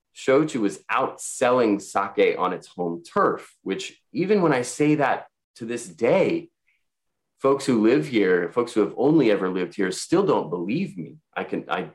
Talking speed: 175 wpm